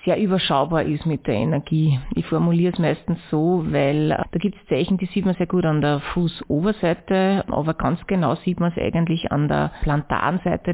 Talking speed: 190 wpm